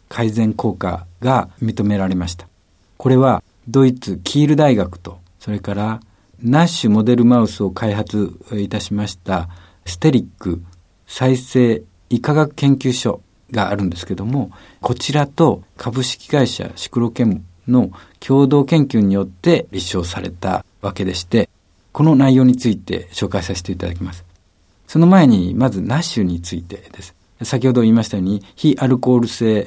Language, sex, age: Japanese, male, 50-69